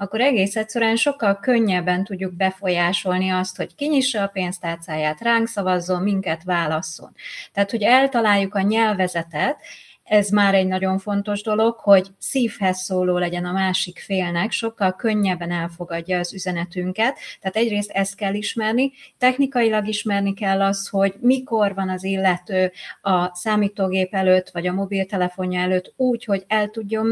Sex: female